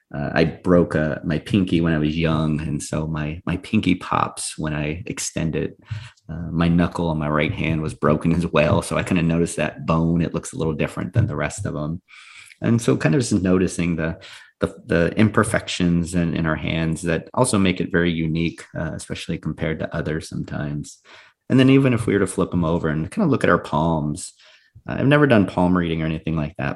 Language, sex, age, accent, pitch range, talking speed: English, male, 30-49, American, 80-95 Hz, 225 wpm